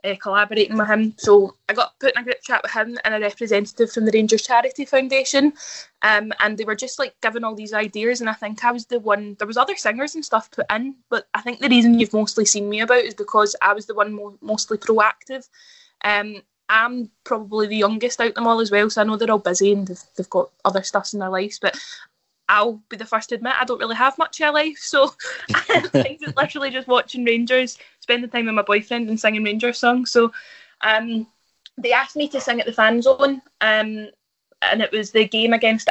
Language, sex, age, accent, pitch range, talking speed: English, female, 10-29, British, 210-245 Hz, 230 wpm